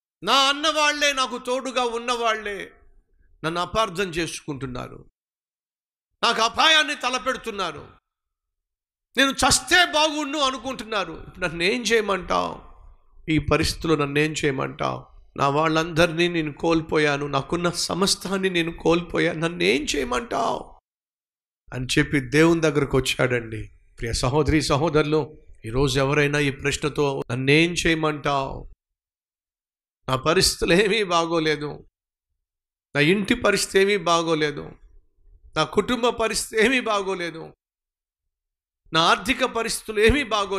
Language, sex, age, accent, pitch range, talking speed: Telugu, male, 50-69, native, 135-205 Hz, 95 wpm